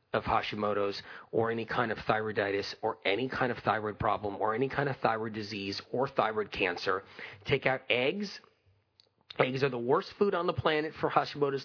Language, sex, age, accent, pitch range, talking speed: English, male, 40-59, American, 110-145 Hz, 180 wpm